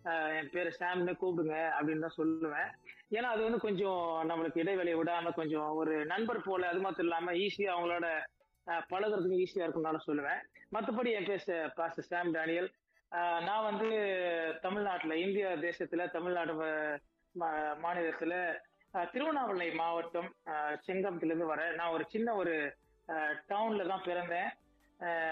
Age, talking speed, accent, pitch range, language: 20-39, 120 wpm, native, 160-190 Hz, Tamil